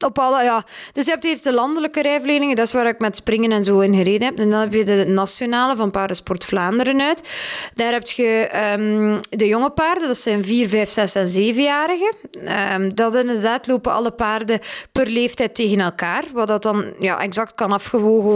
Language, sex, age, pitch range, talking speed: Dutch, female, 20-39, 205-250 Hz, 190 wpm